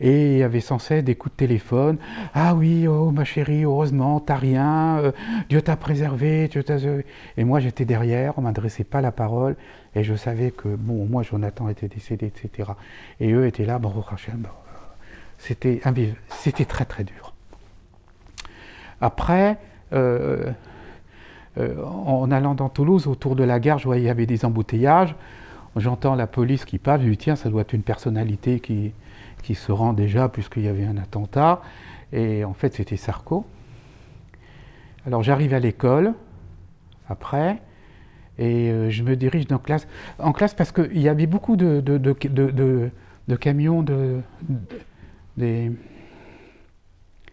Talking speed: 155 wpm